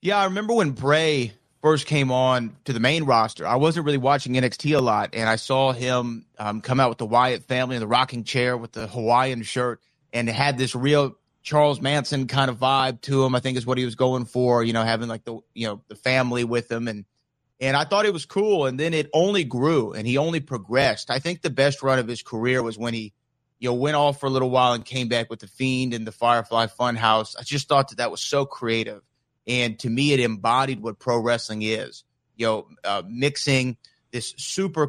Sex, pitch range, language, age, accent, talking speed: male, 120-140 Hz, English, 30-49, American, 235 wpm